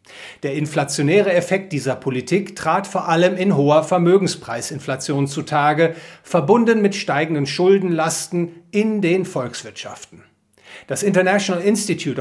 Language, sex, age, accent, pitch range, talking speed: English, male, 40-59, German, 140-180 Hz, 110 wpm